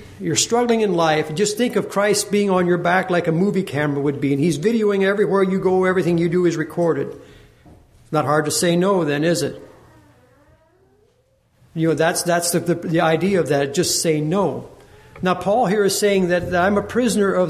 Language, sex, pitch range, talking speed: English, male, 170-205 Hz, 225 wpm